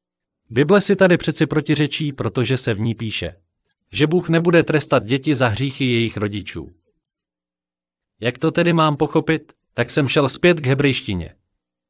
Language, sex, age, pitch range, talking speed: Slovak, male, 40-59, 105-150 Hz, 150 wpm